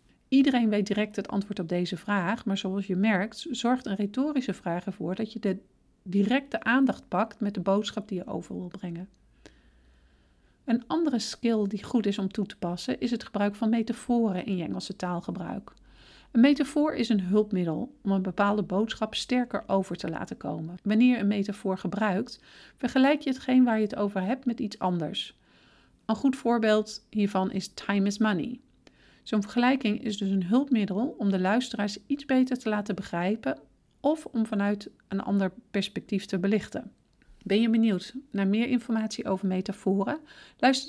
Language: Dutch